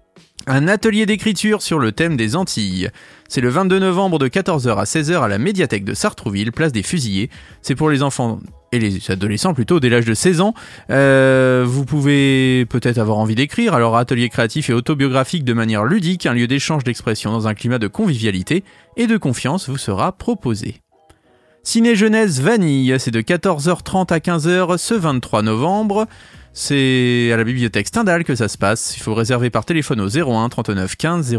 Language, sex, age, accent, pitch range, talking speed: French, male, 30-49, French, 115-175 Hz, 185 wpm